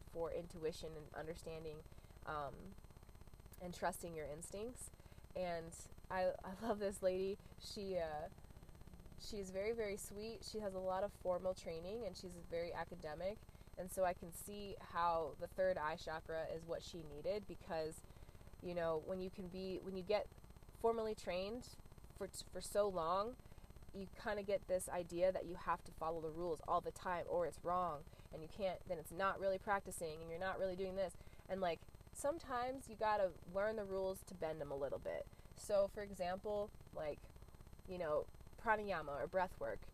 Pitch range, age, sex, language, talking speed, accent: 165-195 Hz, 20-39, female, English, 180 wpm, American